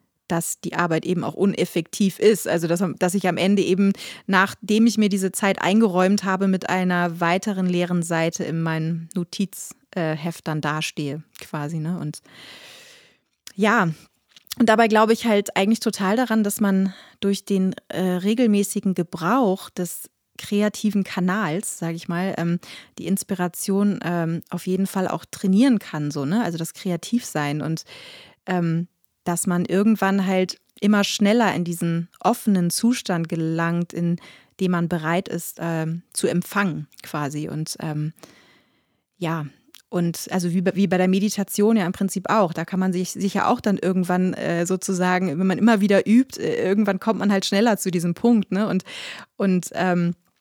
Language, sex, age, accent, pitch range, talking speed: German, female, 30-49, German, 170-205 Hz, 160 wpm